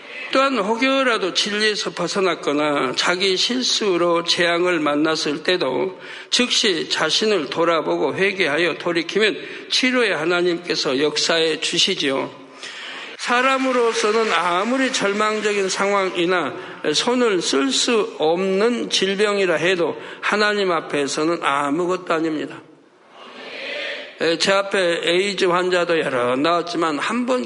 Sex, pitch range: male, 170-225 Hz